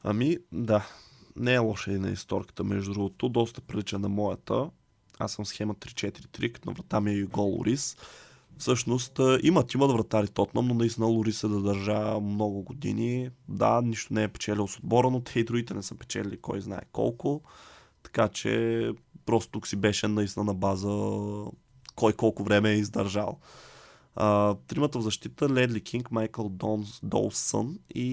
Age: 20-39